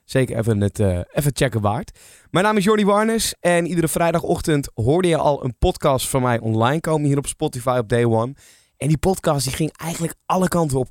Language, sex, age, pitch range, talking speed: Dutch, male, 20-39, 115-145 Hz, 215 wpm